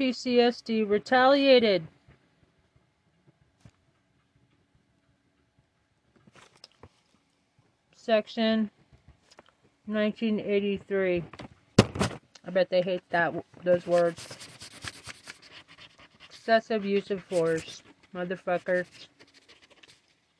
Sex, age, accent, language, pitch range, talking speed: female, 40-59, American, English, 180-225 Hz, 55 wpm